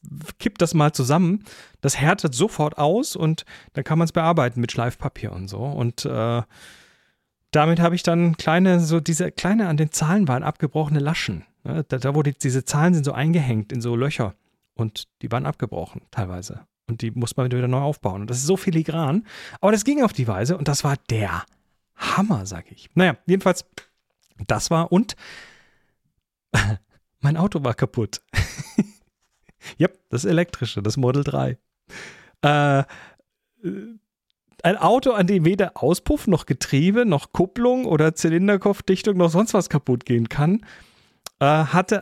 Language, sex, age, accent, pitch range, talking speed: German, male, 40-59, German, 125-180 Hz, 160 wpm